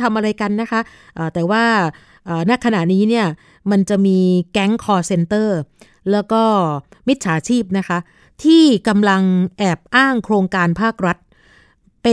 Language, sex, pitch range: Thai, female, 175-225 Hz